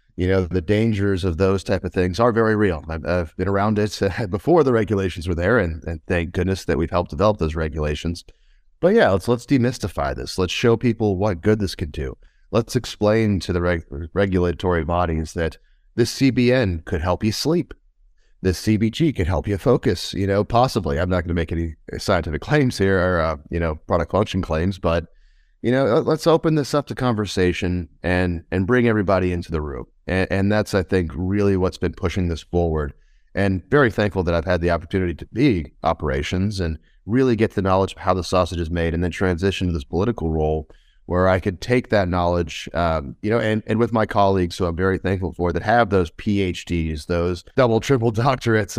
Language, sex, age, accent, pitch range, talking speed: English, male, 30-49, American, 85-105 Hz, 205 wpm